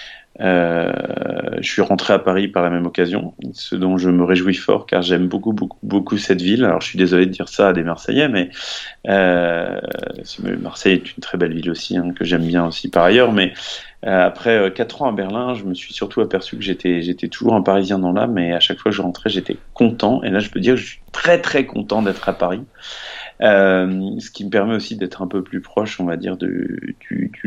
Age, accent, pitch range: 30-49, French, 90-100 Hz